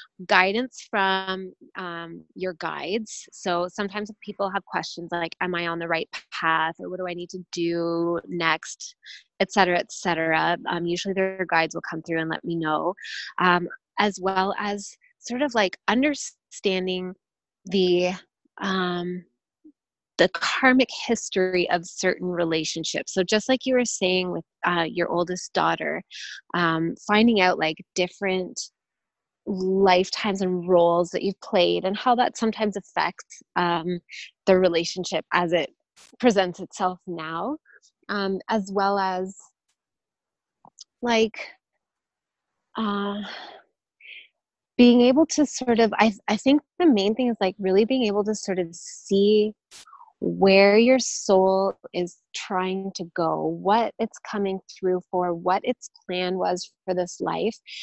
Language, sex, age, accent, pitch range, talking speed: English, female, 20-39, American, 175-215 Hz, 140 wpm